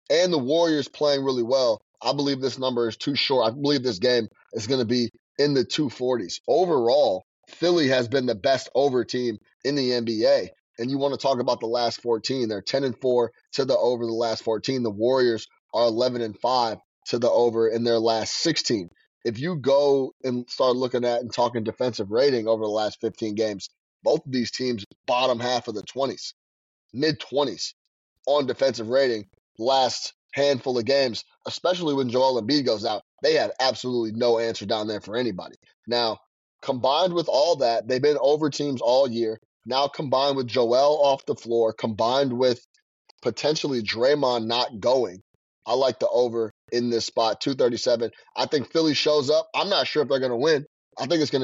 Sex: male